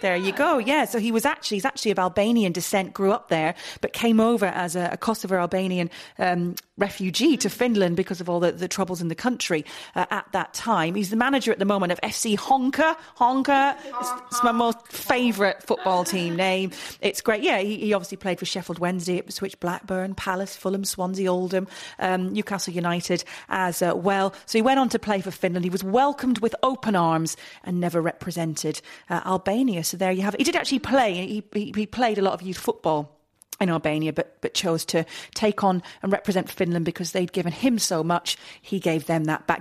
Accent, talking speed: British, 215 wpm